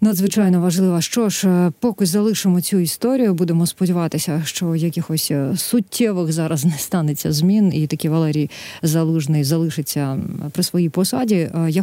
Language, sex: Ukrainian, female